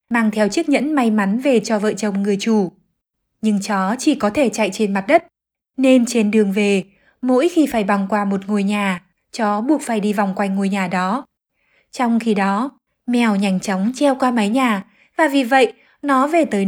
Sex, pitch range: female, 205-265 Hz